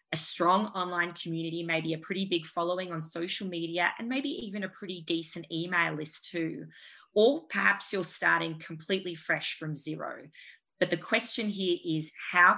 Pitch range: 160-195 Hz